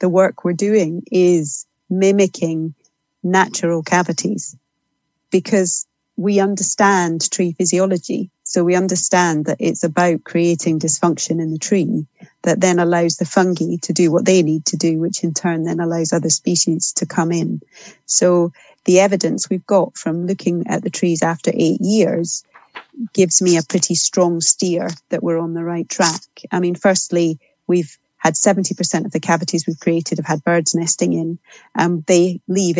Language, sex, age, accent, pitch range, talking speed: English, female, 30-49, British, 165-185 Hz, 165 wpm